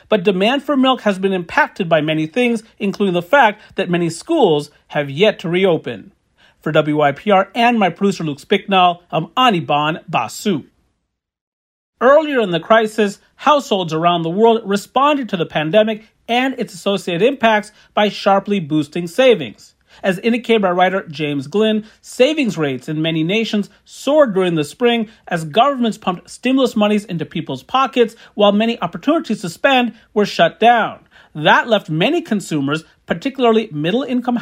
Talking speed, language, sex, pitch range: 150 wpm, English, male, 175-230 Hz